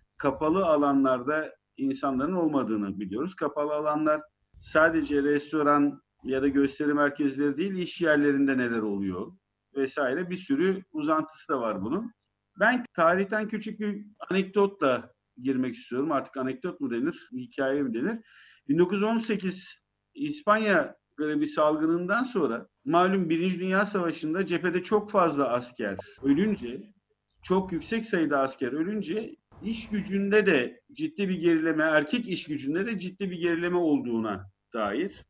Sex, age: male, 50-69